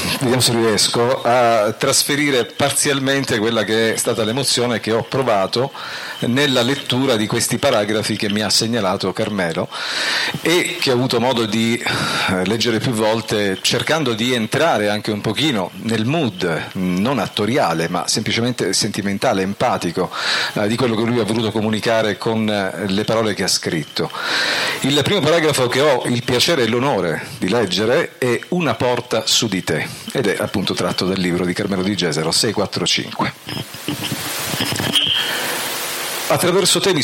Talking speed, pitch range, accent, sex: 145 wpm, 105-135 Hz, native, male